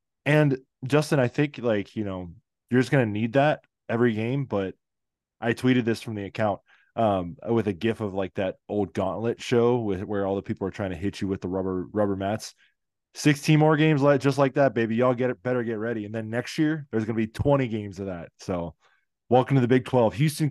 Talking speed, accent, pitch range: 230 wpm, American, 100-130 Hz